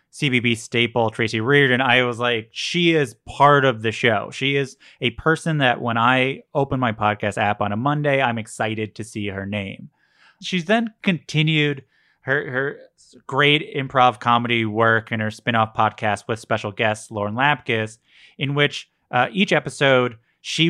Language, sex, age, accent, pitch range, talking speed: English, male, 30-49, American, 115-150 Hz, 165 wpm